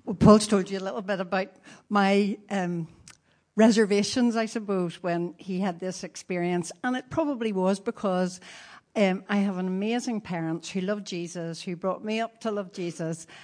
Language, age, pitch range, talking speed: English, 60-79, 180-225 Hz, 175 wpm